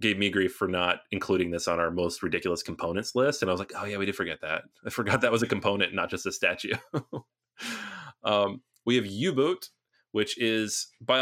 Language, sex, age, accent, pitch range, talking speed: English, male, 30-49, American, 90-120 Hz, 215 wpm